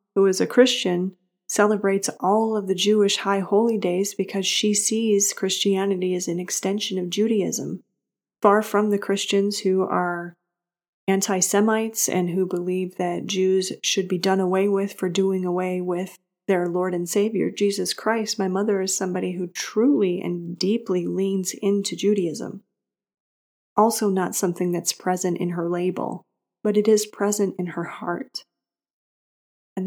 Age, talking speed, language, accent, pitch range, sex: 30-49, 150 wpm, English, American, 185-210 Hz, female